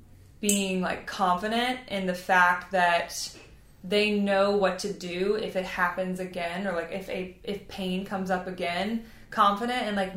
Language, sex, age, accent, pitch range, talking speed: English, female, 20-39, American, 175-200 Hz, 165 wpm